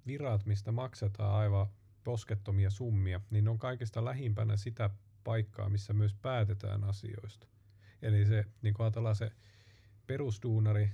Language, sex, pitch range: Finnish, male, 100-115 Hz